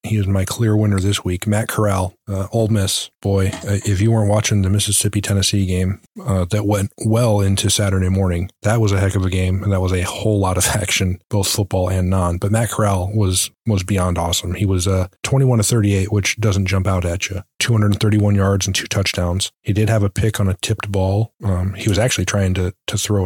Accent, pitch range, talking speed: American, 95-105 Hz, 230 wpm